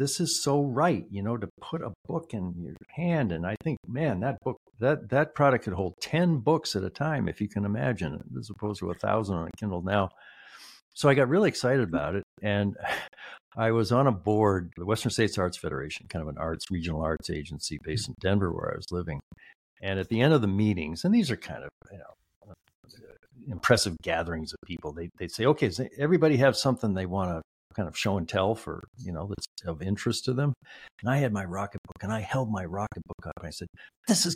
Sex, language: male, English